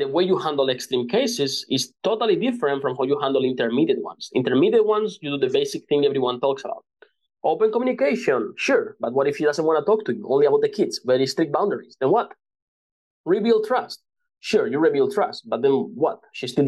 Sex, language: male, English